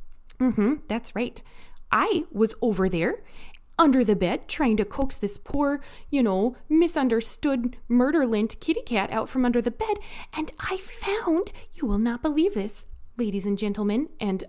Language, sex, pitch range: English, female, 210-315 Hz